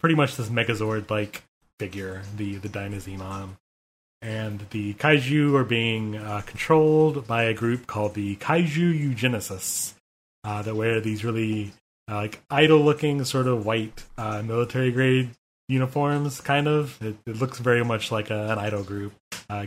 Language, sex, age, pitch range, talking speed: English, male, 20-39, 105-130 Hz, 155 wpm